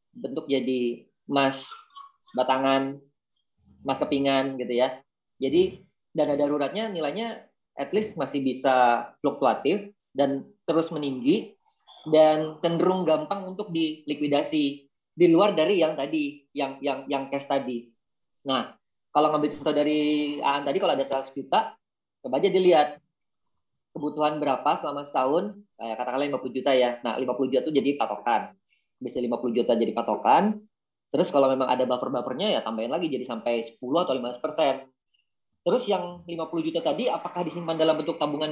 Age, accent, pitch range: 30-49, native, 135-185 Hz